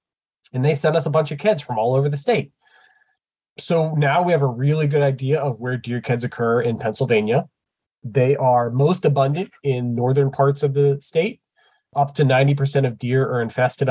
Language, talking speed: English, 195 wpm